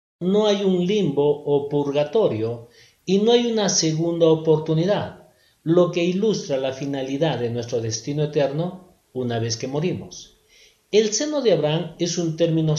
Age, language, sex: 50-69, Spanish, male